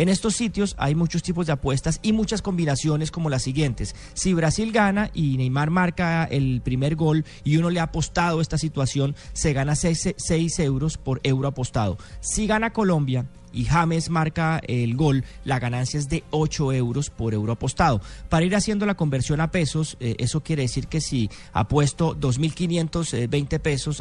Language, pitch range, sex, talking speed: Spanish, 130-165 Hz, male, 175 wpm